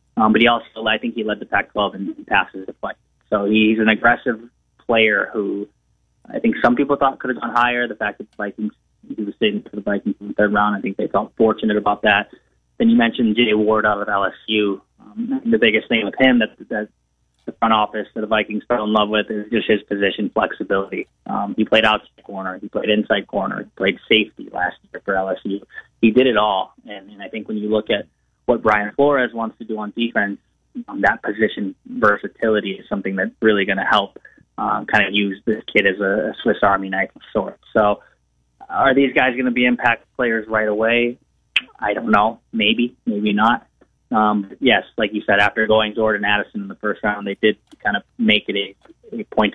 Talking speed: 220 wpm